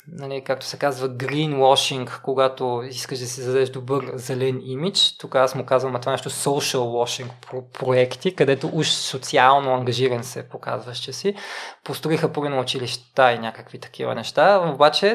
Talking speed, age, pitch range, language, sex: 160 wpm, 20-39, 130-150 Hz, Bulgarian, male